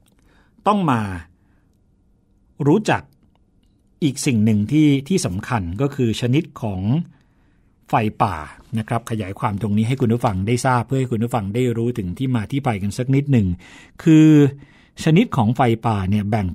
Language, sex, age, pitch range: Thai, male, 60-79, 105-140 Hz